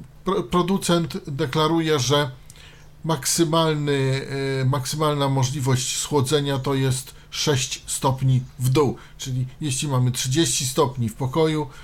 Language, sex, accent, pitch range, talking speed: Polish, male, native, 130-160 Hz, 100 wpm